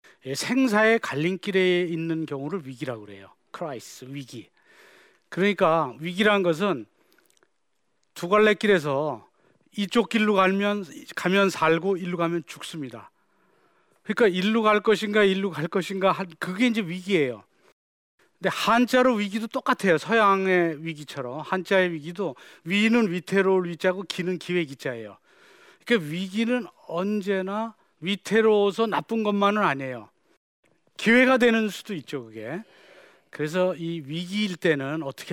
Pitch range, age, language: 160-220 Hz, 40-59, Korean